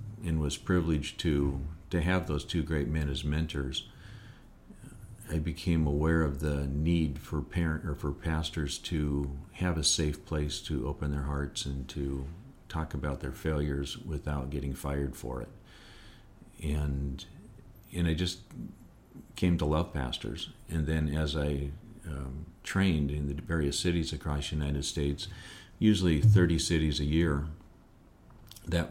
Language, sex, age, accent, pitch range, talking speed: English, male, 50-69, American, 70-85 Hz, 145 wpm